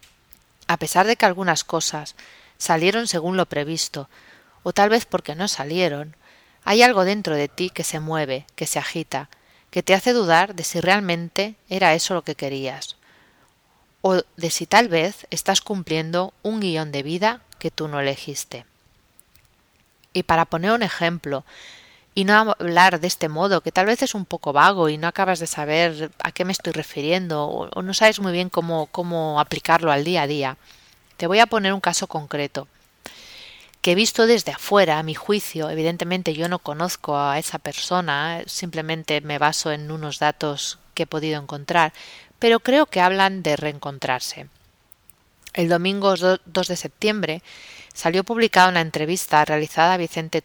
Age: 30-49